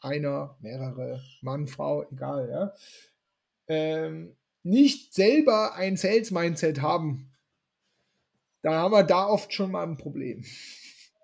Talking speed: 110 wpm